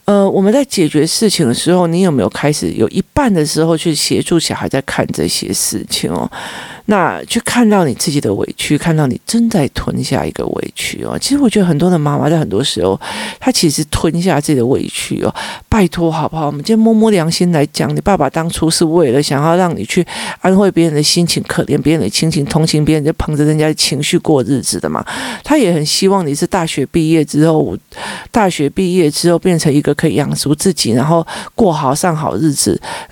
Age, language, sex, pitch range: 50-69, Chinese, male, 155-190 Hz